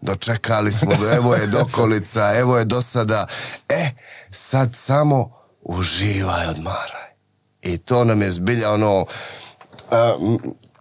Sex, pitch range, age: male, 95-120 Hz, 30-49